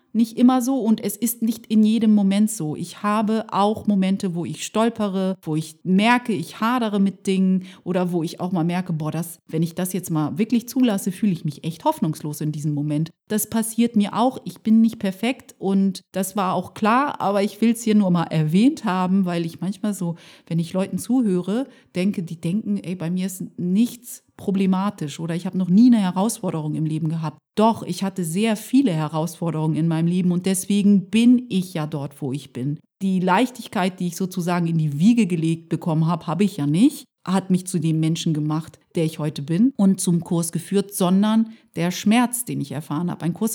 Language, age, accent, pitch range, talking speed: German, 30-49, German, 165-215 Hz, 210 wpm